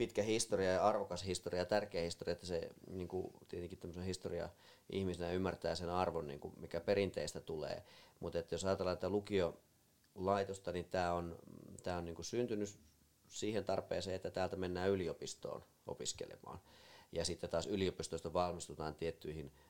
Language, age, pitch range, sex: Finnish, 30-49, 85-95 Hz, male